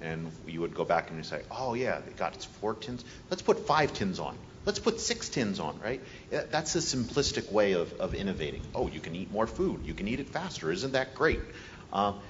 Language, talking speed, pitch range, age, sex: English, 235 wpm, 85-115 Hz, 40-59, male